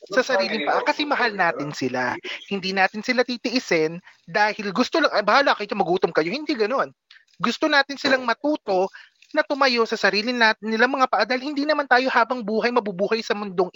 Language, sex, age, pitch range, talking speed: Filipino, male, 20-39, 185-250 Hz, 170 wpm